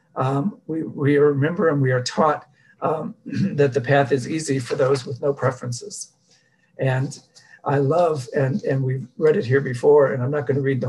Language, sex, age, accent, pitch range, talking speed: English, male, 50-69, American, 135-150 Hz, 200 wpm